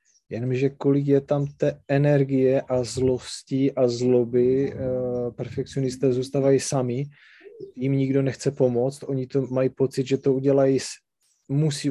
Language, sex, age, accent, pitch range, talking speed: Czech, male, 20-39, native, 120-135 Hz, 135 wpm